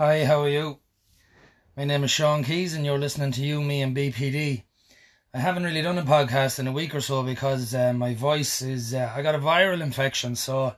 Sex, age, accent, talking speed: male, 20-39, Irish, 225 wpm